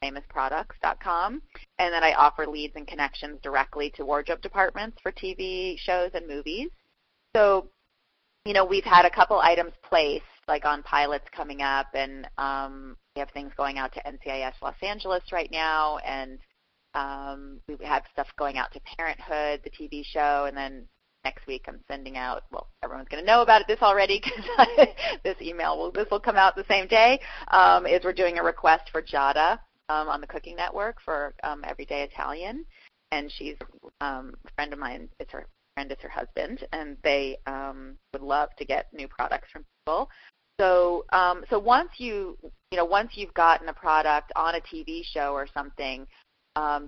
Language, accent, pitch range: English, American, 140-180 Hz